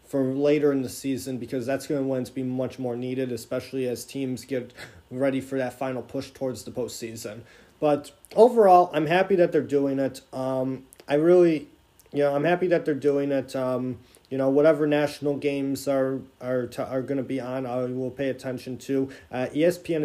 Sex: male